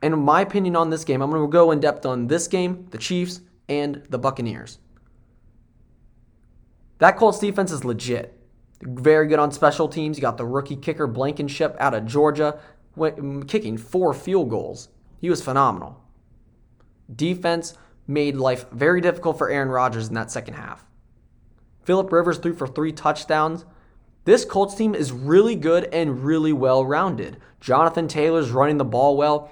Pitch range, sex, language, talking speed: 125-165 Hz, male, English, 160 wpm